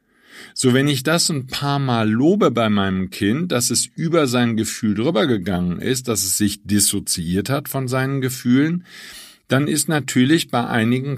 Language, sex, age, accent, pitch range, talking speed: German, male, 50-69, German, 105-130 Hz, 170 wpm